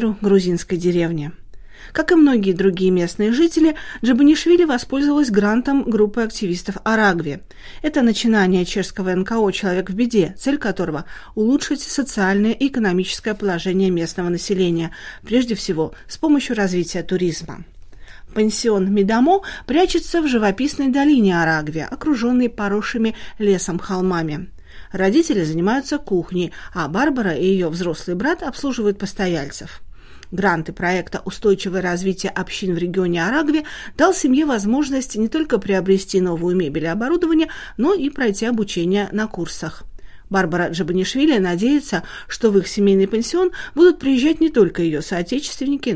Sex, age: female, 40-59